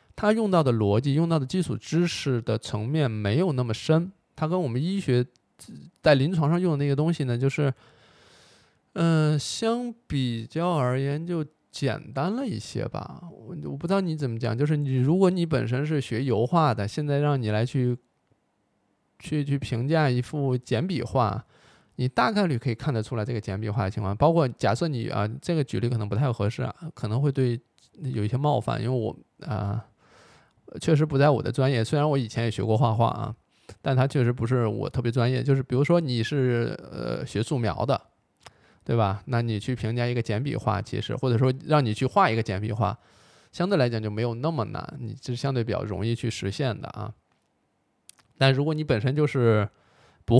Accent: native